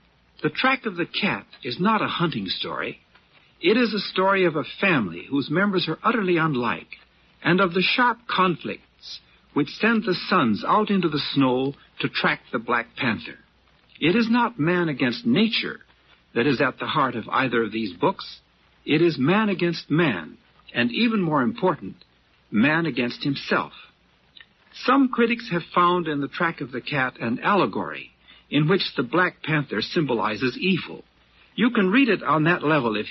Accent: American